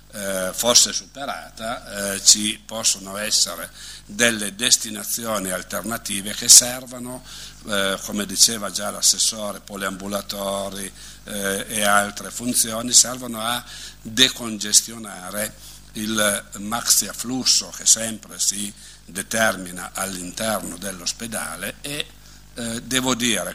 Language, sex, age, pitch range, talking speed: Italian, male, 60-79, 100-120 Hz, 95 wpm